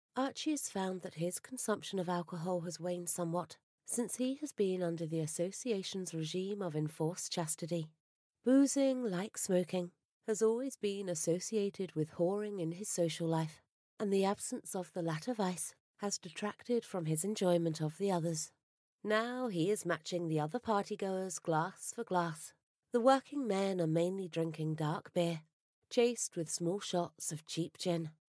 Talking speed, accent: 160 wpm, British